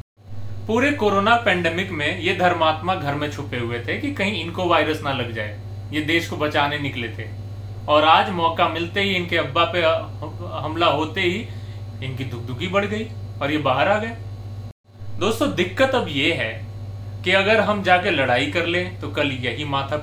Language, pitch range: Hindi, 100-140 Hz